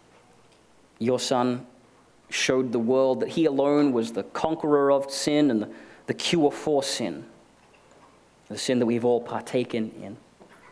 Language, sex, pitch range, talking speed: English, male, 115-145 Hz, 140 wpm